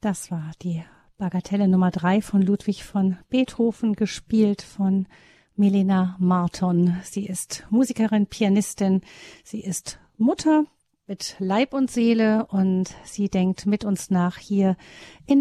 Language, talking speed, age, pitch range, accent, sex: German, 130 wpm, 50-69, 185-220 Hz, German, female